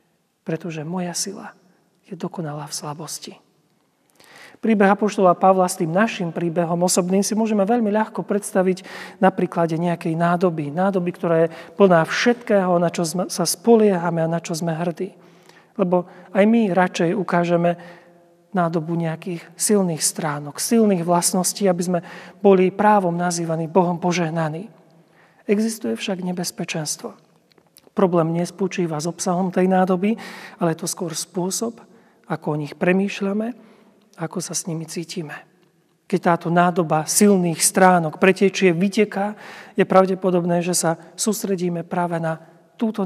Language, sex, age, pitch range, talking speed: Slovak, male, 40-59, 170-195 Hz, 130 wpm